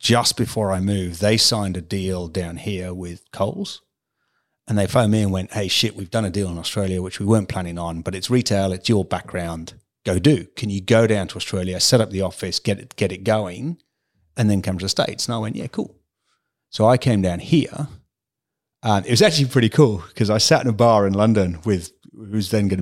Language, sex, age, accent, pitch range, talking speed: English, male, 40-59, British, 95-120 Hz, 230 wpm